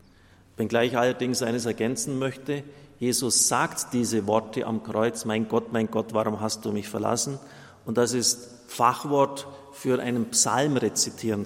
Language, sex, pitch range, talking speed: German, male, 105-135 Hz, 150 wpm